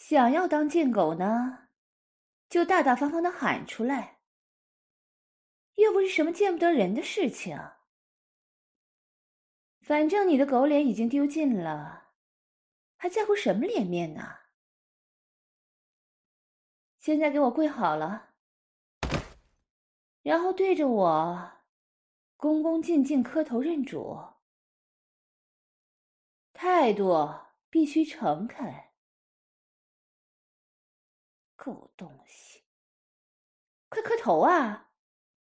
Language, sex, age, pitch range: English, female, 20-39, 220-320 Hz